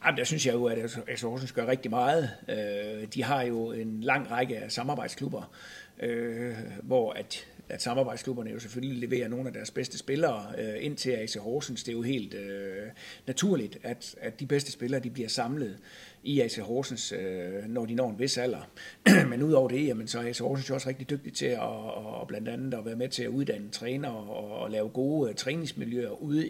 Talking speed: 200 wpm